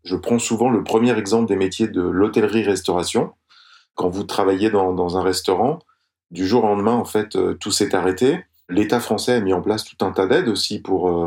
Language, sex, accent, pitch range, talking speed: French, male, French, 95-120 Hz, 200 wpm